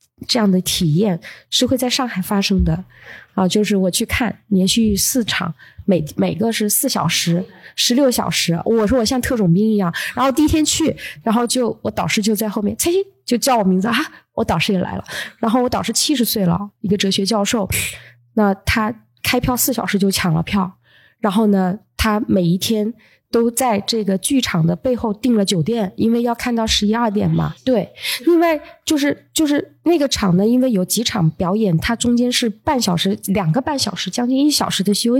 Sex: female